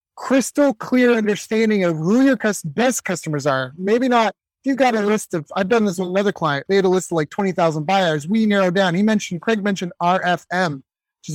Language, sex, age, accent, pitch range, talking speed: English, male, 30-49, American, 165-215 Hz, 205 wpm